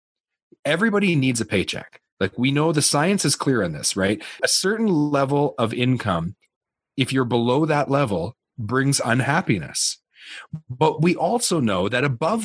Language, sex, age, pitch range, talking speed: English, male, 30-49, 105-145 Hz, 155 wpm